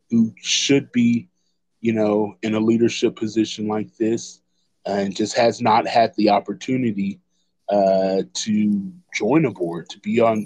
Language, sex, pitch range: English, male, 100-115 Hz